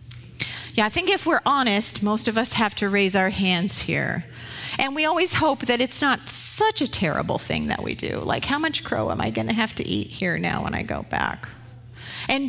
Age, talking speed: 50-69, 225 wpm